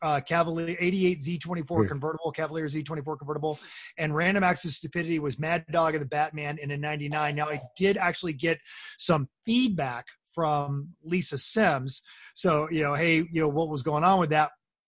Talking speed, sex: 180 wpm, male